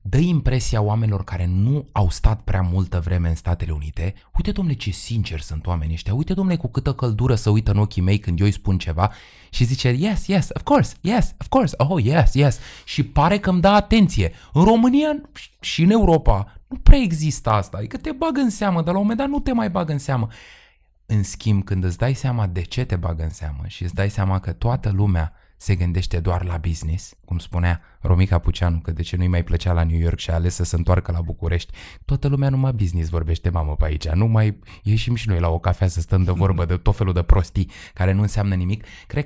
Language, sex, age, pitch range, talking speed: Romanian, male, 20-39, 90-125 Hz, 235 wpm